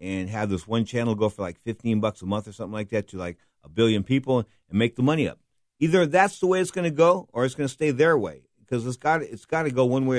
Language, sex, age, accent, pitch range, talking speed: English, male, 50-69, American, 100-125 Hz, 295 wpm